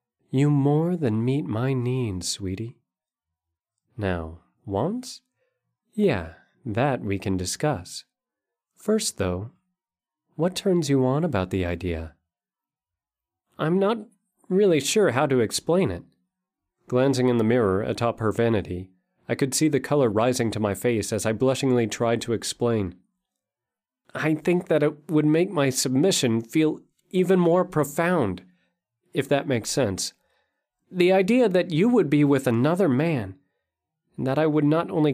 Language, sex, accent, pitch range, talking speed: English, male, American, 105-160 Hz, 145 wpm